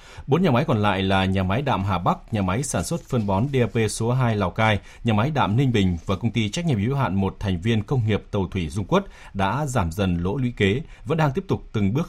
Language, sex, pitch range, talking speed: Vietnamese, male, 100-130 Hz, 275 wpm